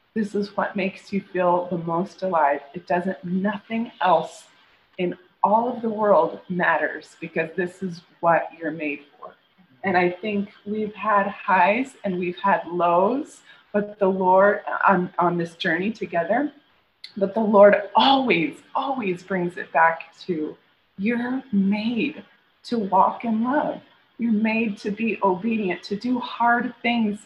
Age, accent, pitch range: 20-39, American, 180-230 Hz